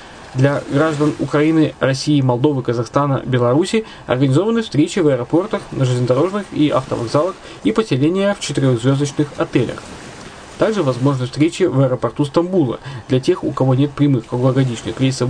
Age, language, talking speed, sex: 20-39, Russian, 135 wpm, male